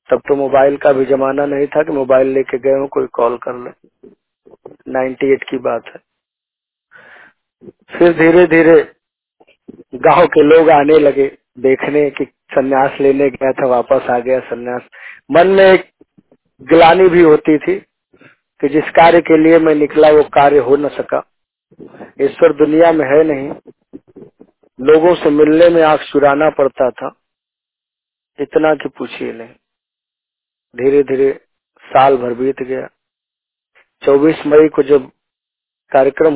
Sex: male